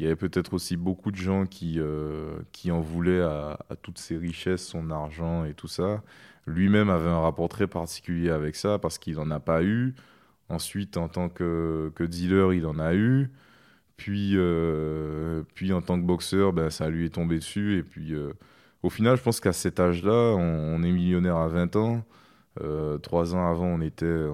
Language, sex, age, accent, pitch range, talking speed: French, male, 20-39, French, 80-95 Hz, 205 wpm